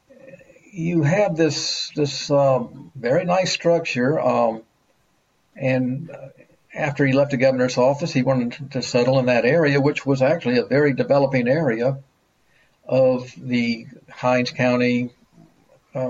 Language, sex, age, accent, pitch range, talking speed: English, male, 60-79, American, 125-155 Hz, 130 wpm